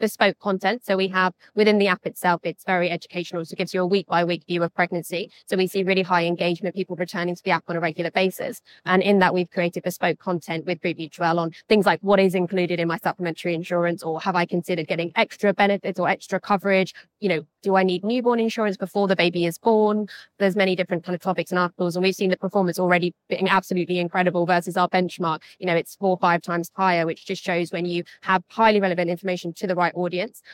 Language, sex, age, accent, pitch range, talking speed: German, female, 20-39, British, 175-190 Hz, 240 wpm